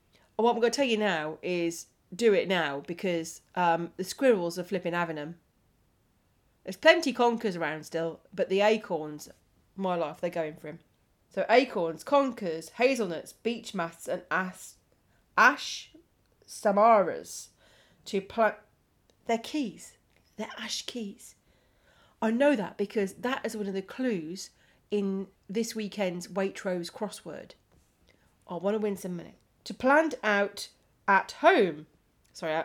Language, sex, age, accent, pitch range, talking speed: English, female, 30-49, British, 170-230 Hz, 140 wpm